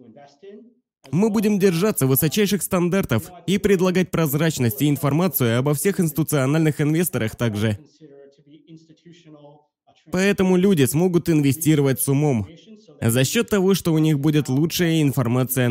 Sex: male